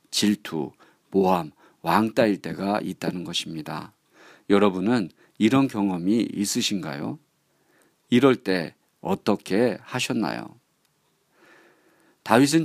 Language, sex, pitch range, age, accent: Korean, male, 95-130 Hz, 40-59, native